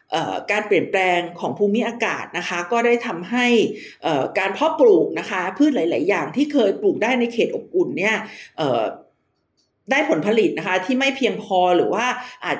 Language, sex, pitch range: Thai, female, 190-270 Hz